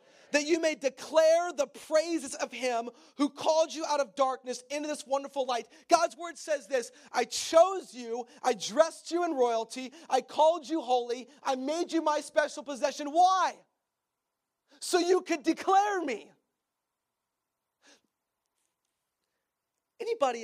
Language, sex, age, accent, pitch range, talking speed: English, male, 40-59, American, 210-310 Hz, 140 wpm